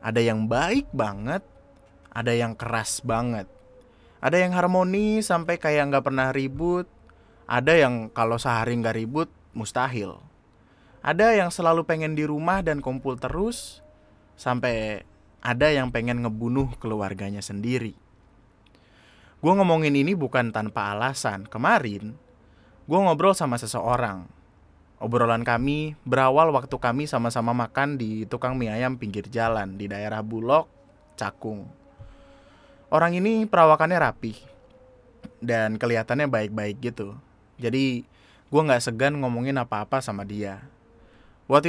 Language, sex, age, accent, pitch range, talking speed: Indonesian, male, 20-39, native, 110-140 Hz, 120 wpm